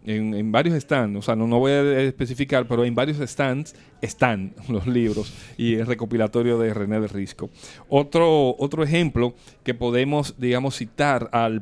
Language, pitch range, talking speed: English, 115-140 Hz, 170 wpm